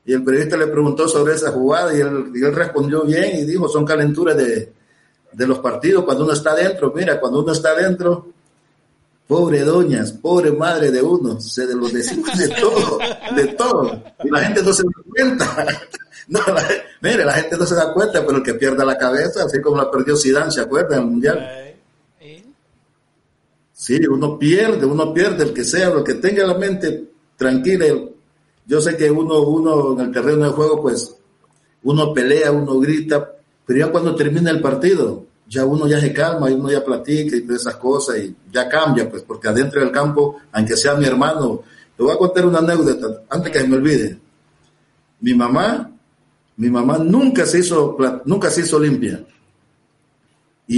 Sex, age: male, 60-79